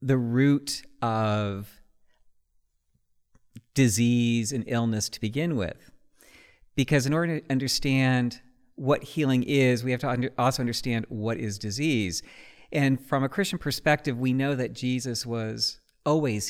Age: 50-69